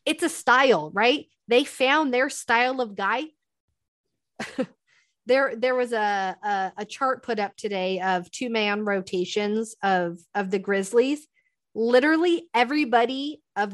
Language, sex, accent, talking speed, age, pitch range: English, female, American, 135 wpm, 30-49, 215-270 Hz